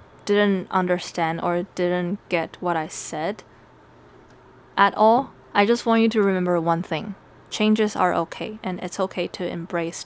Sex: female